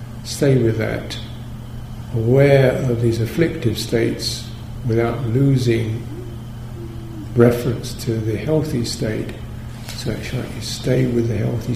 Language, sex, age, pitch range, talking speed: English, male, 50-69, 115-120 Hz, 105 wpm